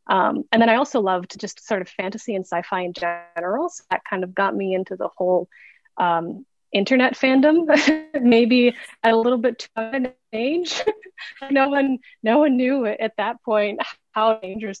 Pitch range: 185-230 Hz